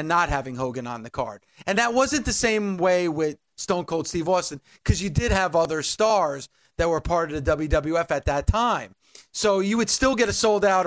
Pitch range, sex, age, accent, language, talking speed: 155-200 Hz, male, 40-59, American, English, 220 wpm